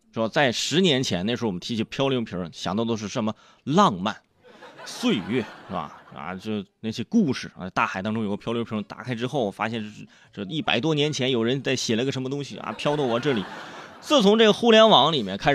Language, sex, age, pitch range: Chinese, male, 20-39, 105-145 Hz